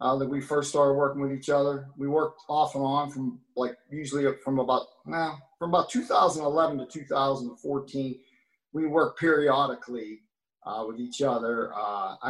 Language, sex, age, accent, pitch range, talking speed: English, male, 40-59, American, 125-145 Hz, 165 wpm